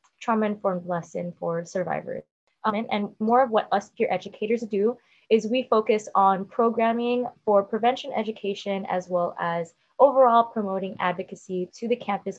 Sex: female